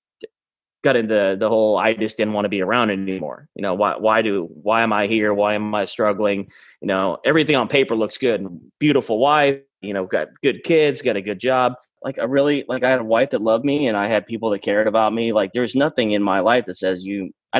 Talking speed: 250 wpm